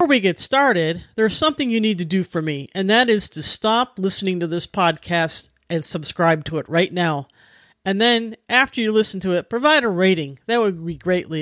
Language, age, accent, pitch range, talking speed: English, 50-69, American, 160-230 Hz, 215 wpm